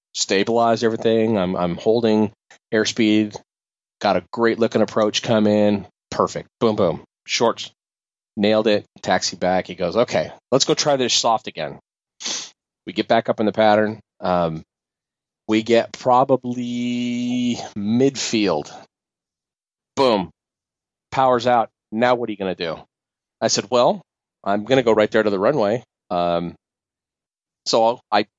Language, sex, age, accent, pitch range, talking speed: English, male, 30-49, American, 100-125 Hz, 135 wpm